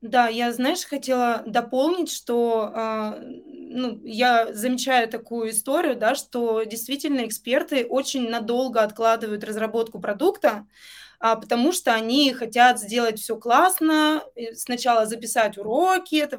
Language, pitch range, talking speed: Russian, 230-270 Hz, 115 wpm